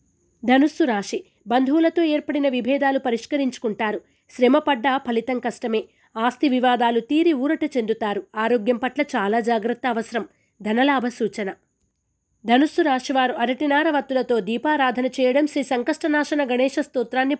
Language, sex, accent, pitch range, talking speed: Telugu, female, native, 230-290 Hz, 115 wpm